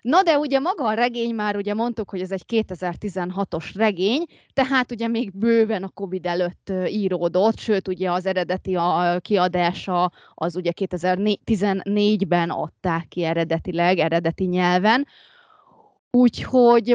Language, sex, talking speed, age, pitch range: Hungarian, female, 135 wpm, 20-39, 180-230 Hz